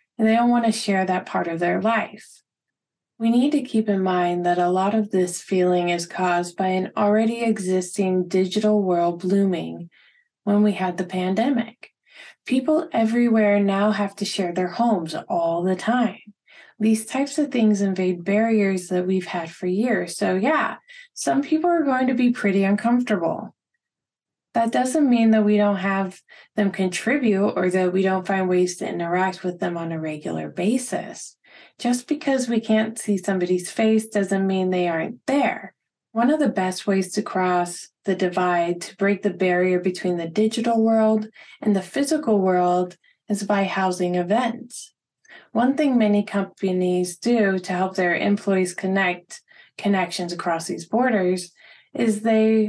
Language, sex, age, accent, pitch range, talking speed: English, female, 20-39, American, 180-225 Hz, 165 wpm